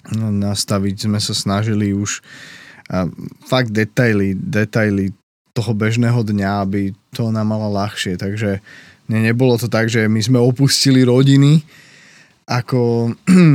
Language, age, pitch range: Slovak, 20-39, 105-130 Hz